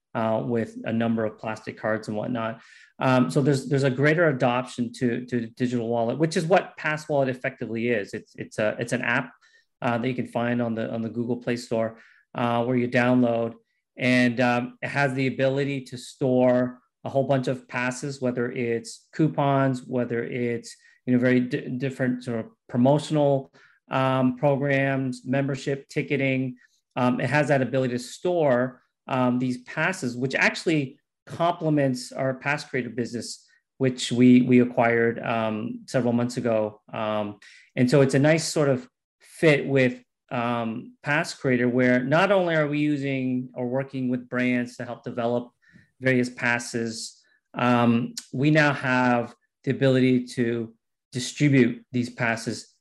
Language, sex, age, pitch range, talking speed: English, male, 30-49, 120-140 Hz, 160 wpm